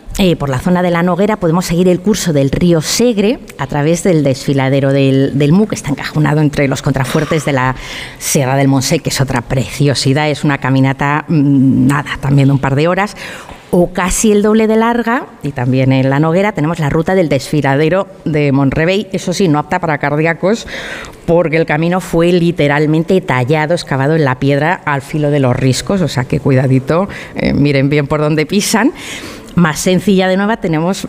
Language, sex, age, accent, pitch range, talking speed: Spanish, female, 30-49, Spanish, 140-185 Hz, 195 wpm